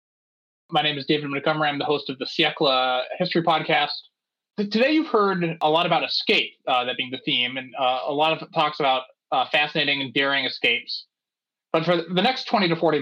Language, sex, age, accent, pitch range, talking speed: English, male, 20-39, American, 150-210 Hz, 210 wpm